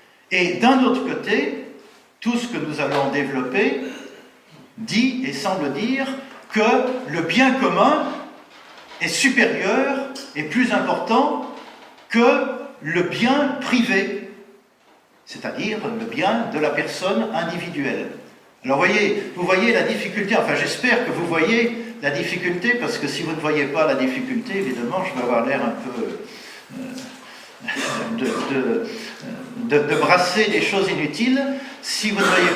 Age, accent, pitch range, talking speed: 50-69, French, 185-250 Hz, 135 wpm